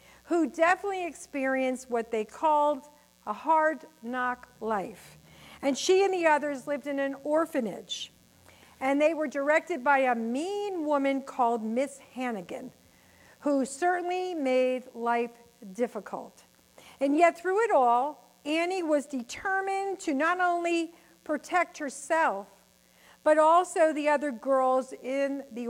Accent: American